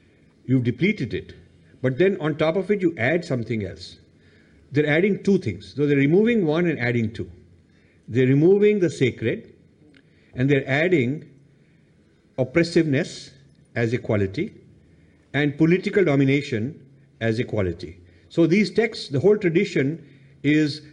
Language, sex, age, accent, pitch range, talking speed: English, male, 50-69, Indian, 110-155 Hz, 130 wpm